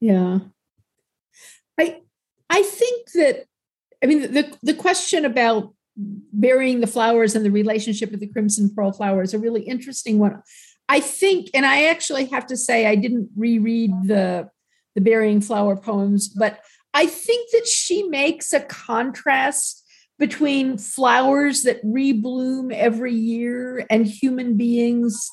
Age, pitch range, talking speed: 50-69, 215-275 Hz, 145 wpm